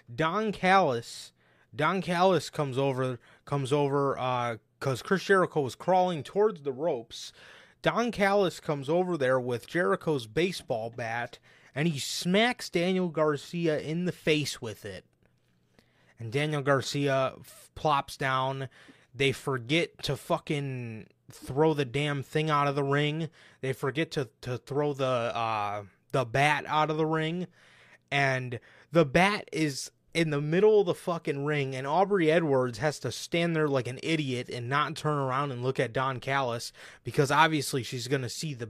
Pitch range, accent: 130-165 Hz, American